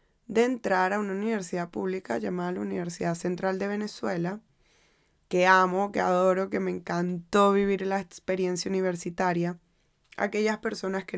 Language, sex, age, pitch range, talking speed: Spanish, female, 20-39, 185-215 Hz, 140 wpm